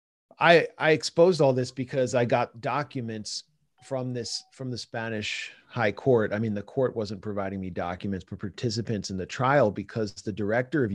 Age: 30-49